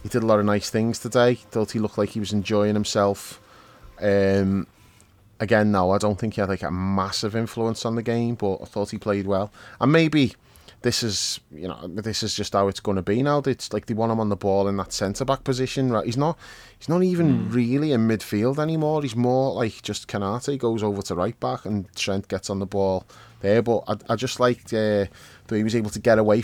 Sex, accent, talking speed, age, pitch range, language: male, British, 240 wpm, 20-39, 100-115 Hz, English